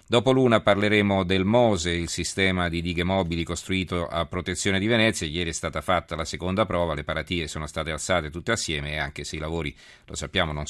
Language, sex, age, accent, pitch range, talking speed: Italian, male, 40-59, native, 80-95 Hz, 210 wpm